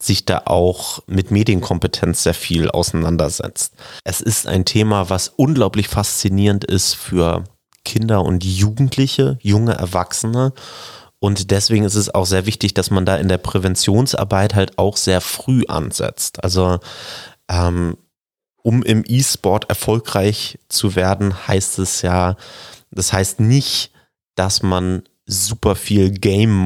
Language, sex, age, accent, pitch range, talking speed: German, male, 30-49, German, 95-115 Hz, 135 wpm